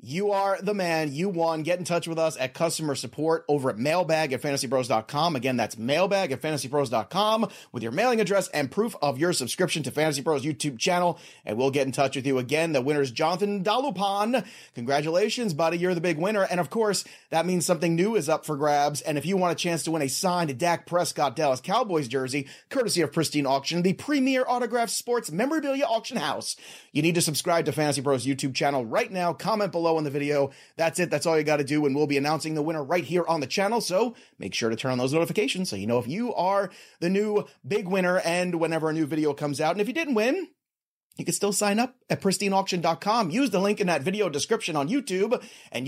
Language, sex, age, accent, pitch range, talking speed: English, male, 30-49, American, 150-220 Hz, 230 wpm